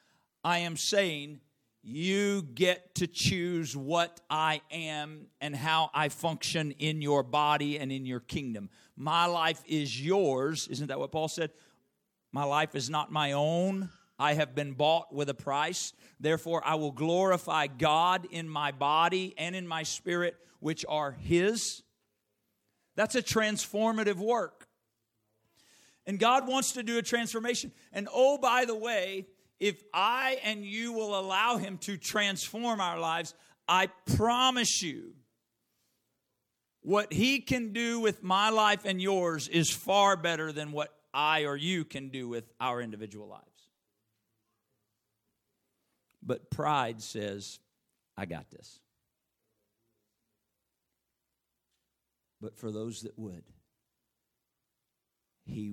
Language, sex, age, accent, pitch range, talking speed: English, male, 50-69, American, 115-190 Hz, 130 wpm